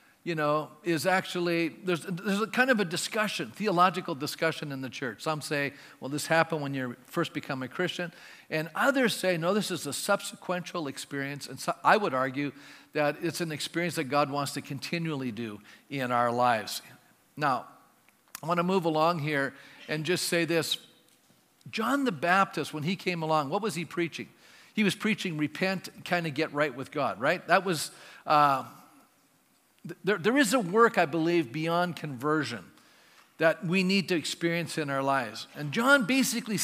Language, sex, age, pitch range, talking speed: English, male, 50-69, 150-205 Hz, 180 wpm